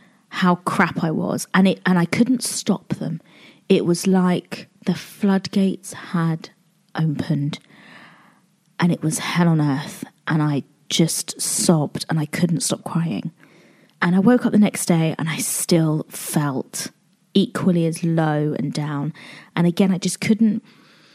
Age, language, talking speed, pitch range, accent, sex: 30-49, English, 155 wpm, 165-195 Hz, British, female